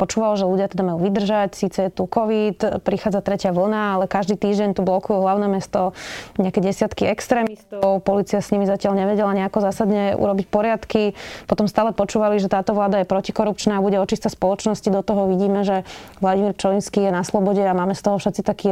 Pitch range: 190-215 Hz